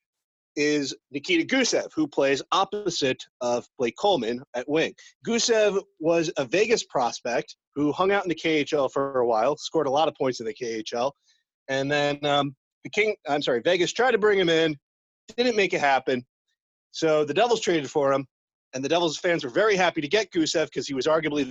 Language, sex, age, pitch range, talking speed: English, male, 30-49, 135-185 Hz, 195 wpm